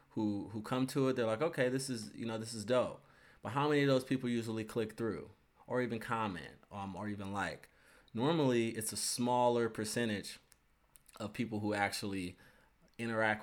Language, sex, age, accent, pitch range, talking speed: English, male, 20-39, American, 95-115 Hz, 185 wpm